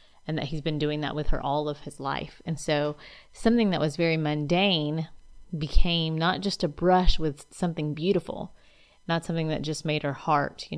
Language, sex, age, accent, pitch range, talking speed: English, female, 30-49, American, 145-165 Hz, 195 wpm